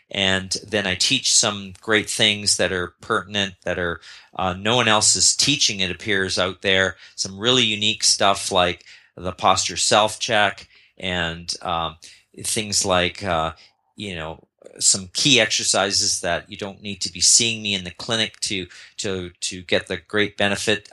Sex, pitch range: male, 95-115 Hz